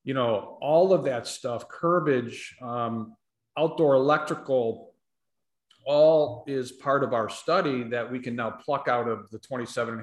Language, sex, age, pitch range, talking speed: English, male, 40-59, 120-145 Hz, 155 wpm